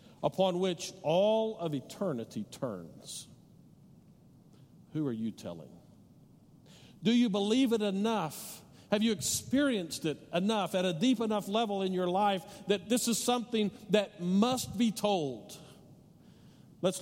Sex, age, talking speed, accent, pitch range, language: male, 50-69, 130 wpm, American, 140-210 Hz, English